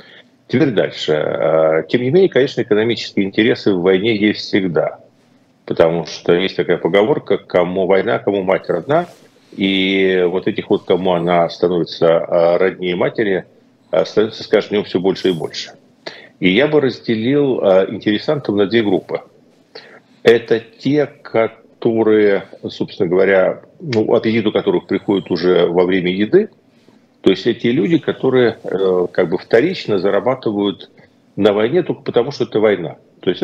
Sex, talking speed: male, 140 wpm